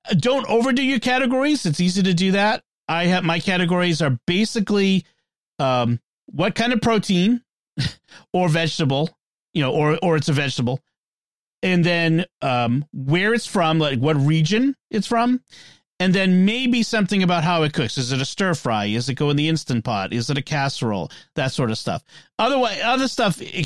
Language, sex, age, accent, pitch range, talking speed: English, male, 40-59, American, 145-195 Hz, 180 wpm